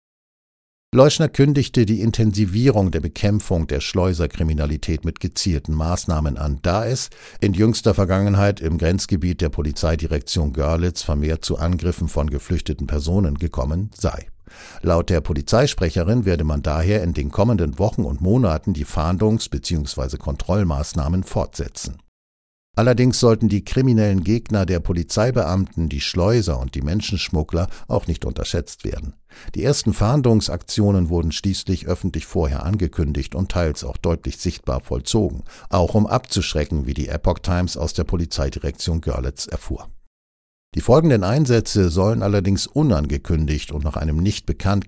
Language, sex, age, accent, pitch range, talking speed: German, male, 60-79, German, 75-100 Hz, 135 wpm